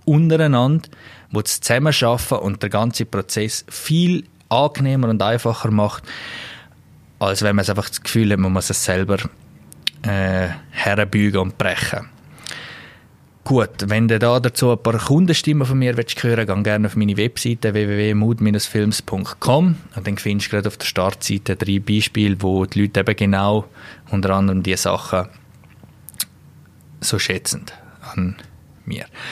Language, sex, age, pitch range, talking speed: German, male, 20-39, 100-125 Hz, 145 wpm